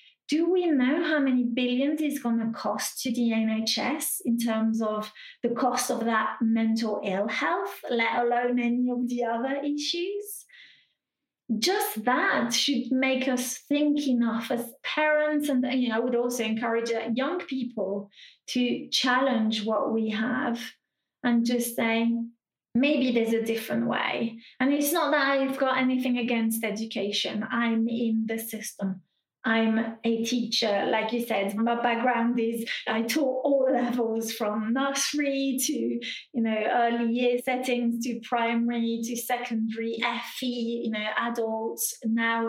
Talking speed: 145 wpm